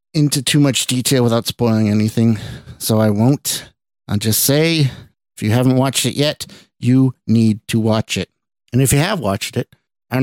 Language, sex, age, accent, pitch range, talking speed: English, male, 50-69, American, 105-130 Hz, 190 wpm